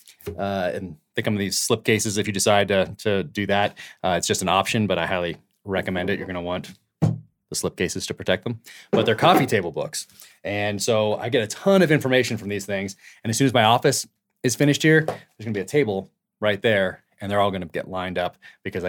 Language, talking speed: English, 245 wpm